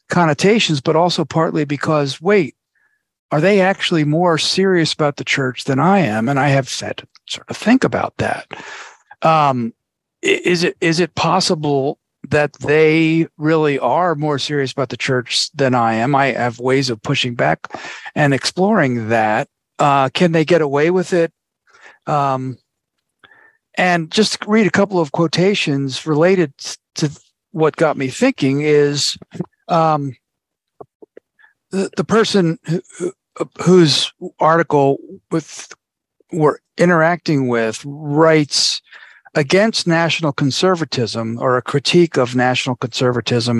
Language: English